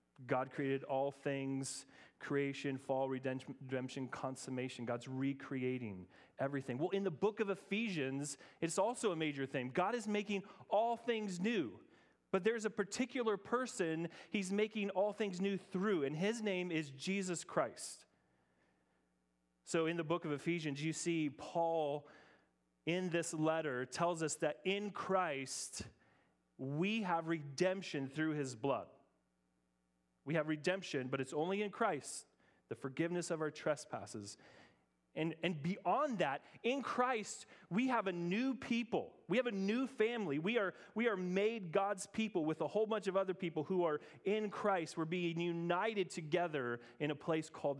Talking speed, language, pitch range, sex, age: 155 wpm, English, 135-195 Hz, male, 30-49